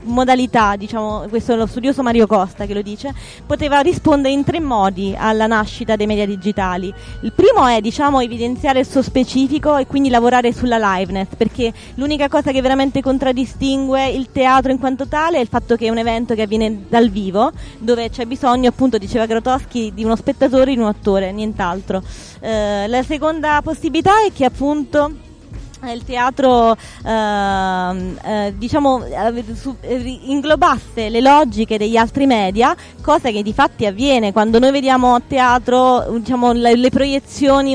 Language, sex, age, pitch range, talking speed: Italian, female, 20-39, 220-270 Hz, 165 wpm